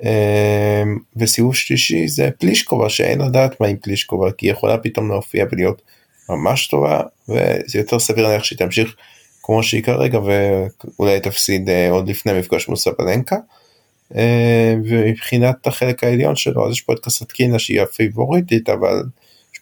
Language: Hebrew